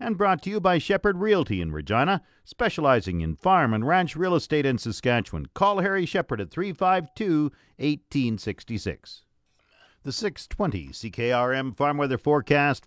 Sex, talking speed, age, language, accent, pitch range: male, 135 wpm, 50-69, English, American, 105-150 Hz